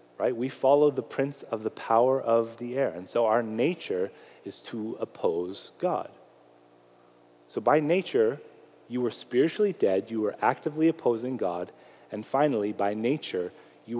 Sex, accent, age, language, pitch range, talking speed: male, American, 30-49, English, 90-125 Hz, 155 wpm